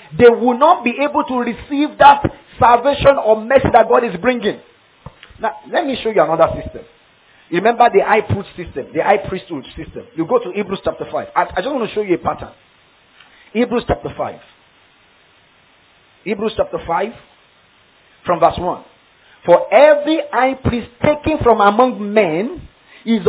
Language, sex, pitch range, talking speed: English, male, 215-285 Hz, 155 wpm